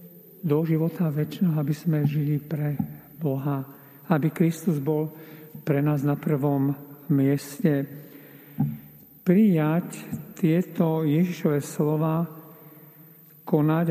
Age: 50-69